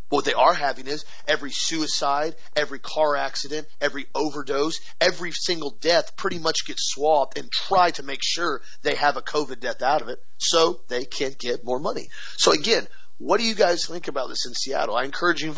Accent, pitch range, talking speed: American, 130-170 Hz, 200 wpm